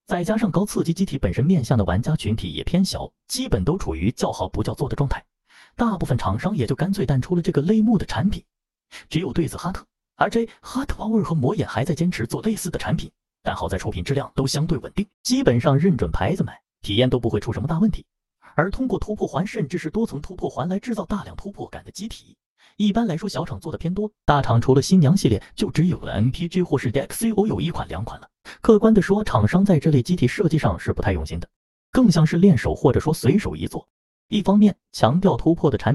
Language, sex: Chinese, male